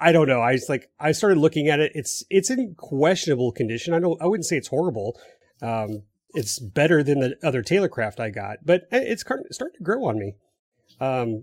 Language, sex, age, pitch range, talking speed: English, male, 30-49, 115-160 Hz, 210 wpm